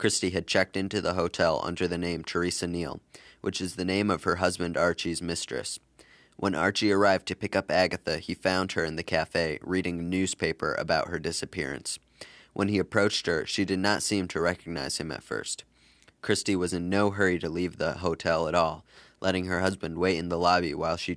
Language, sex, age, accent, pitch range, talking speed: English, male, 20-39, American, 85-100 Hz, 205 wpm